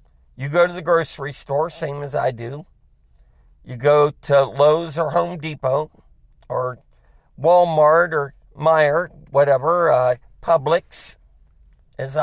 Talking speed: 125 wpm